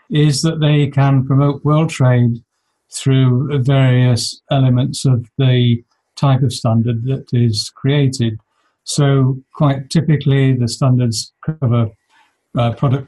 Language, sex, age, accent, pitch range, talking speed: English, male, 60-79, British, 125-150 Hz, 120 wpm